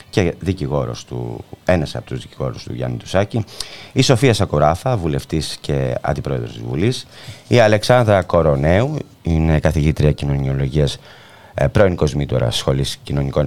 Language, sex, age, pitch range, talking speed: Greek, male, 30-49, 70-100 Hz, 115 wpm